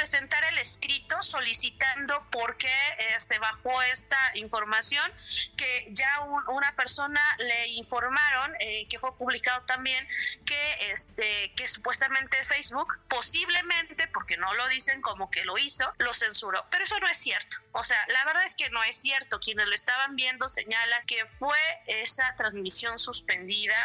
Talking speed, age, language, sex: 160 wpm, 30-49, Spanish, female